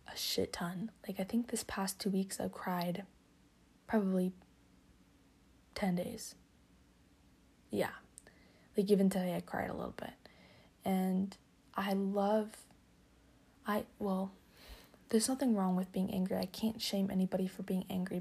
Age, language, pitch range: 20-39, English, 180-200 Hz